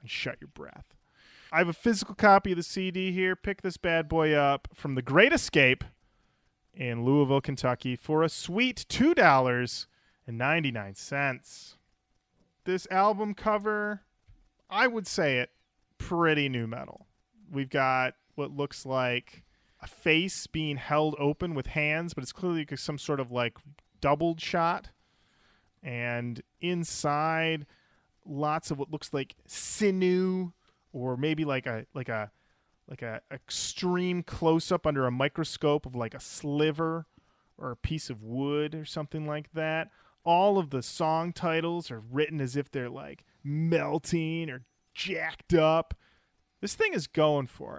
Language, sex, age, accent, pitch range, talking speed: English, male, 30-49, American, 130-170 Hz, 145 wpm